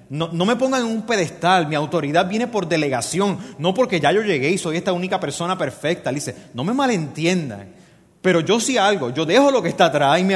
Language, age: Spanish, 30-49